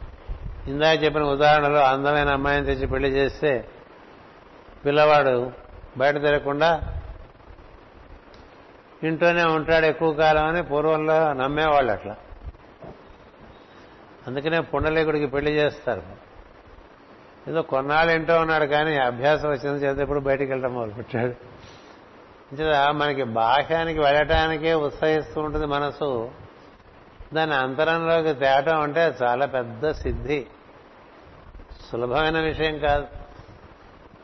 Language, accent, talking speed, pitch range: Telugu, native, 90 wpm, 130-155 Hz